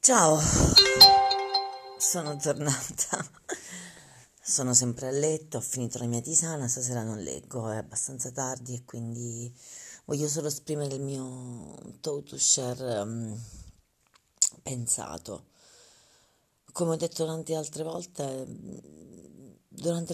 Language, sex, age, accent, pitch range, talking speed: Italian, female, 40-59, native, 120-150 Hz, 110 wpm